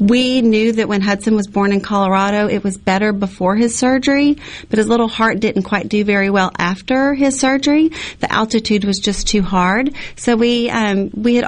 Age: 30-49